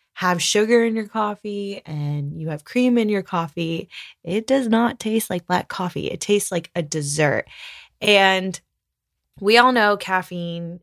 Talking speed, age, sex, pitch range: 160 wpm, 20-39, female, 155-195 Hz